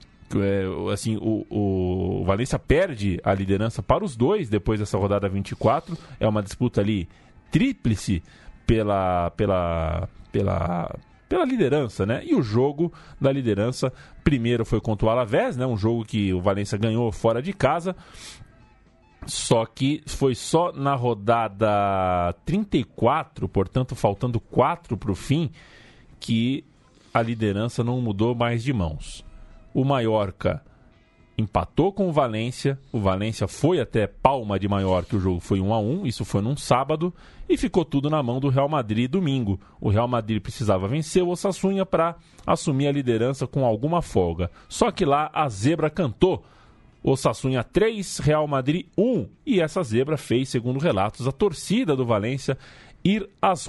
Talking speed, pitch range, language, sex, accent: 145 wpm, 100-145 Hz, Portuguese, male, Brazilian